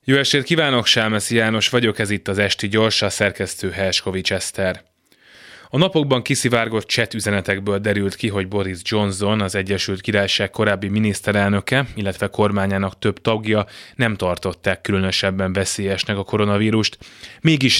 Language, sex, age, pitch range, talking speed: Hungarian, male, 20-39, 100-115 Hz, 135 wpm